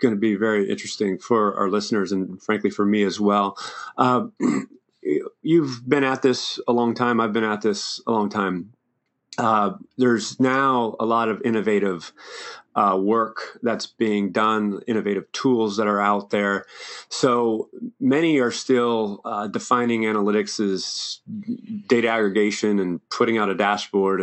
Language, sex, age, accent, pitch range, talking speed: English, male, 30-49, American, 100-115 Hz, 155 wpm